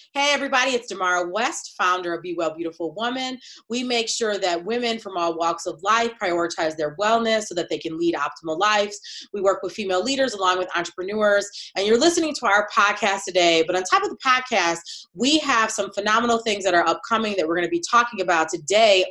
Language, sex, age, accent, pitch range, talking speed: English, female, 20-39, American, 170-230 Hz, 215 wpm